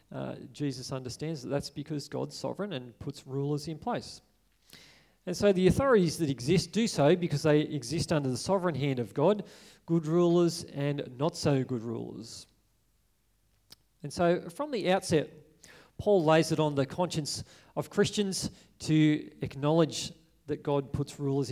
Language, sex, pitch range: English, male, 140-175 Hz